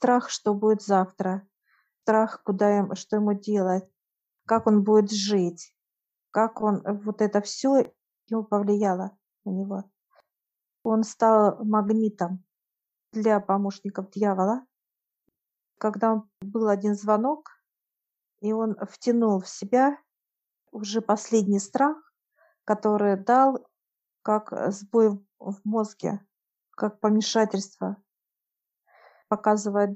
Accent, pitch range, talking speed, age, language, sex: native, 195-225 Hz, 100 wpm, 50-69, Russian, female